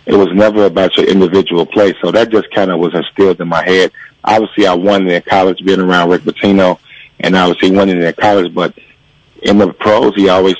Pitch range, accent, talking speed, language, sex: 90-100 Hz, American, 210 wpm, English, male